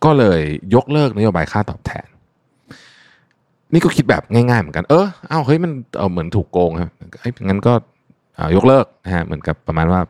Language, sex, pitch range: Thai, male, 85-120 Hz